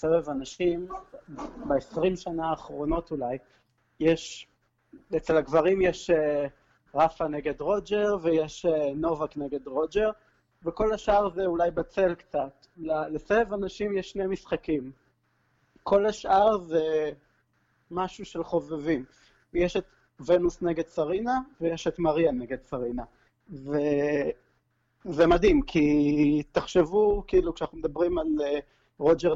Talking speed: 110 wpm